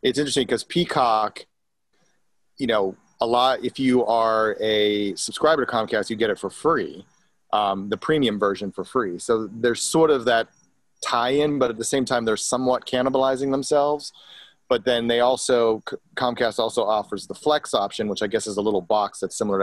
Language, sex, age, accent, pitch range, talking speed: English, male, 30-49, American, 105-130 Hz, 185 wpm